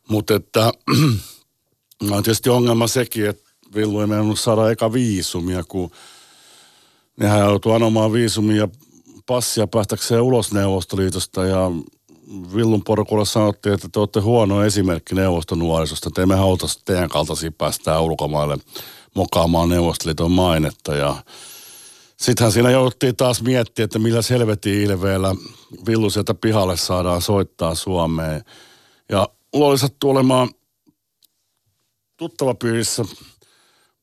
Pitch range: 90-115 Hz